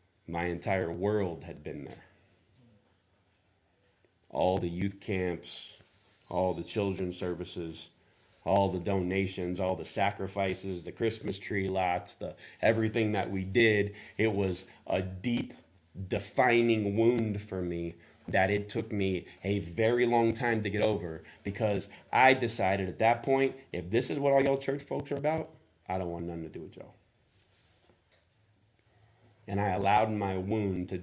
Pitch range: 90-110 Hz